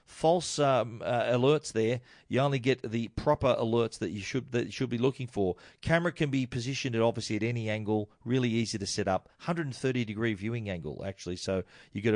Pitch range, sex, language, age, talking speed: 105-130 Hz, male, English, 40-59, 205 wpm